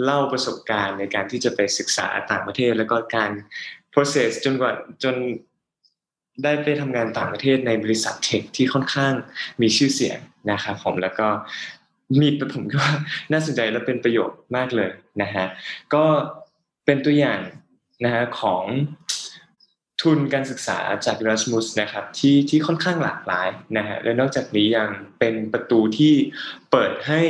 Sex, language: male, Thai